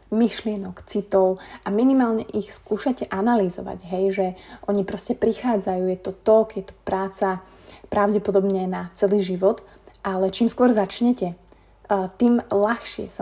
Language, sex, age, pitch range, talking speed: Slovak, female, 30-49, 190-220 Hz, 130 wpm